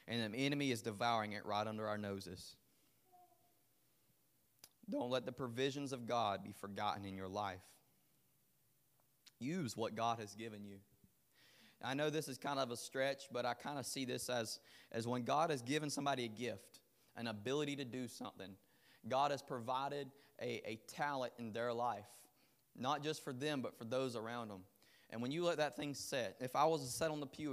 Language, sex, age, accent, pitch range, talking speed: English, male, 20-39, American, 115-135 Hz, 190 wpm